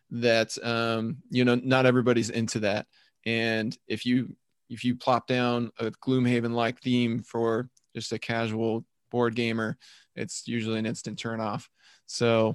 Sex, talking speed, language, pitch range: male, 145 wpm, English, 115-130 Hz